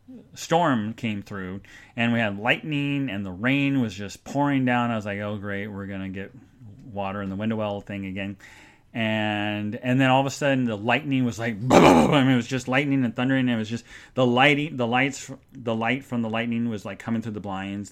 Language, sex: English, male